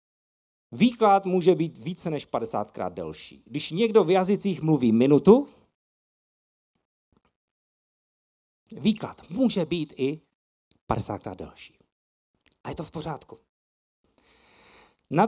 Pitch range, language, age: 130-185 Hz, Czech, 50-69